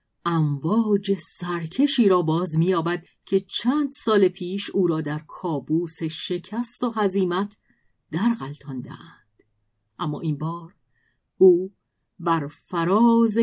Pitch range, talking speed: 160-205 Hz, 105 wpm